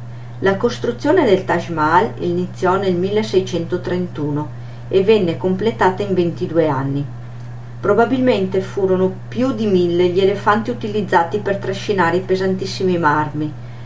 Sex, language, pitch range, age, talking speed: female, Italian, 135-190 Hz, 40-59, 115 wpm